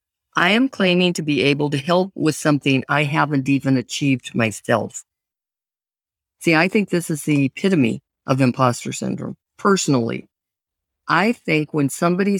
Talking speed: 145 wpm